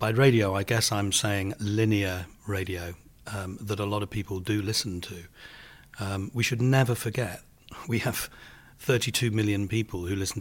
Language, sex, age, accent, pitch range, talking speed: English, male, 40-59, British, 100-120 Hz, 165 wpm